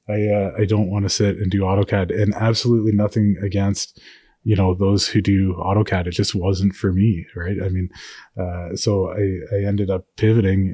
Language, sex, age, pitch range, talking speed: English, male, 20-39, 95-105 Hz, 195 wpm